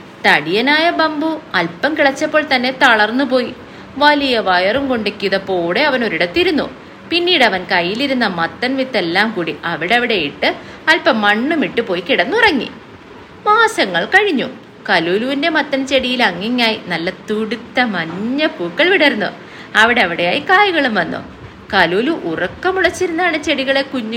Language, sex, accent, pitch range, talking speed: English, female, Indian, 210-300 Hz, 100 wpm